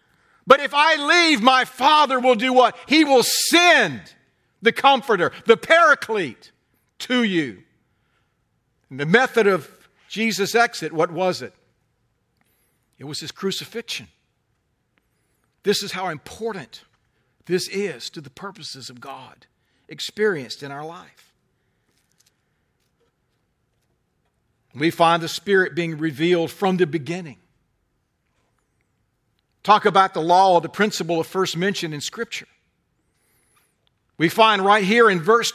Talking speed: 125 wpm